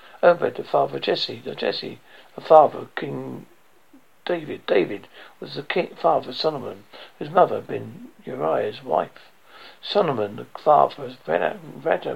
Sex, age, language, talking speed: male, 60-79, English, 145 wpm